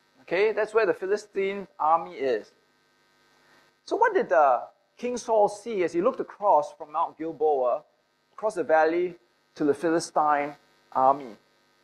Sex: male